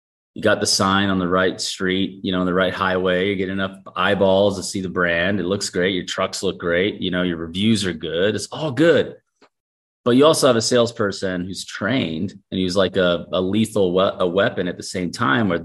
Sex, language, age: male, English, 30-49